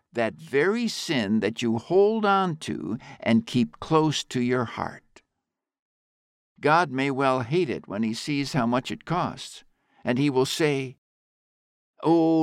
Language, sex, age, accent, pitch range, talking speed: English, male, 60-79, American, 120-170 Hz, 150 wpm